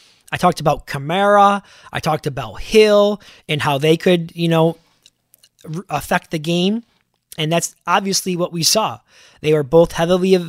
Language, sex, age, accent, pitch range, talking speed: English, male, 20-39, American, 155-195 Hz, 160 wpm